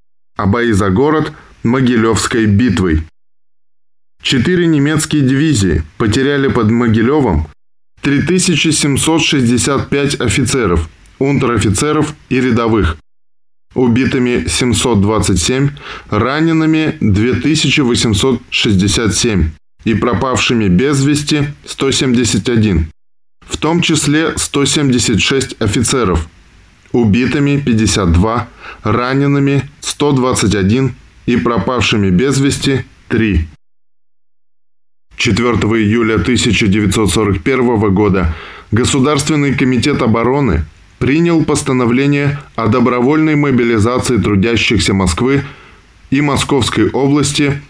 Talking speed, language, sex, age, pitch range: 75 wpm, Russian, male, 20-39, 100-135 Hz